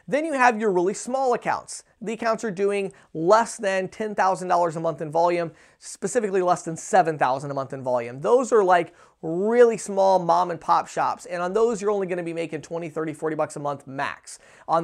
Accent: American